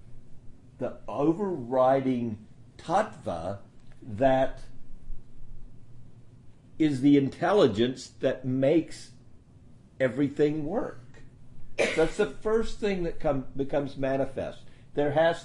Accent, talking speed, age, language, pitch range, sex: American, 80 wpm, 50-69, English, 110-130 Hz, male